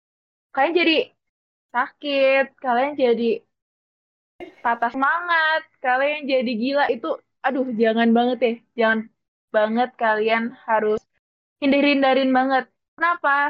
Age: 20-39